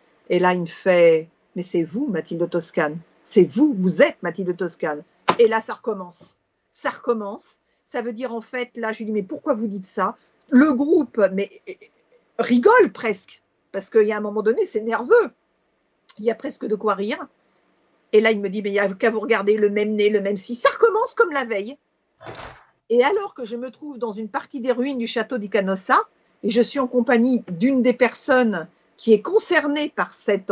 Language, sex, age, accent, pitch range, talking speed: French, female, 50-69, French, 210-330 Hz, 225 wpm